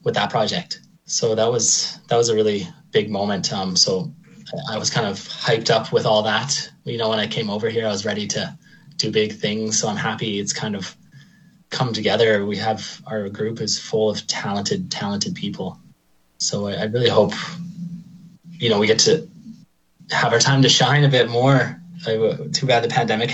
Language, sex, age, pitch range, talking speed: English, male, 20-39, 110-180 Hz, 200 wpm